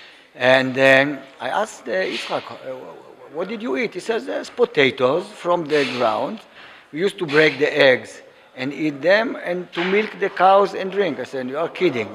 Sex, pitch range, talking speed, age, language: male, 120-180 Hz, 195 wpm, 50-69, English